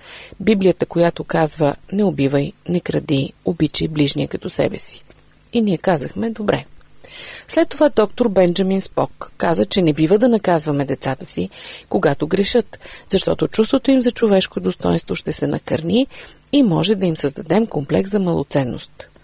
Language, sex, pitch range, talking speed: Bulgarian, female, 165-245 Hz, 150 wpm